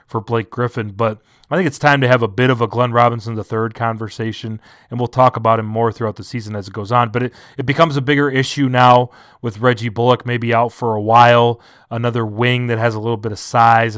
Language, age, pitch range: English, 30-49, 110-125 Hz